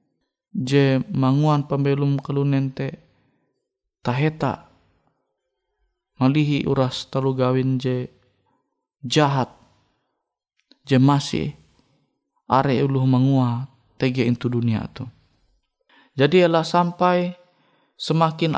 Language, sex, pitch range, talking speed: Indonesian, male, 130-150 Hz, 80 wpm